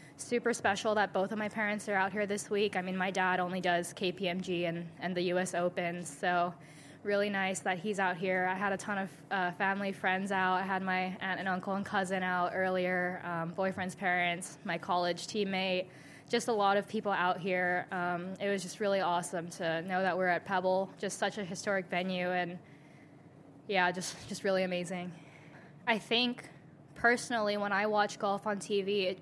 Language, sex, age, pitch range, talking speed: English, female, 10-29, 180-200 Hz, 195 wpm